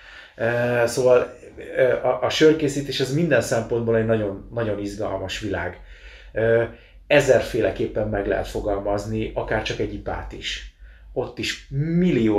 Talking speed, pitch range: 130 wpm, 100-120 Hz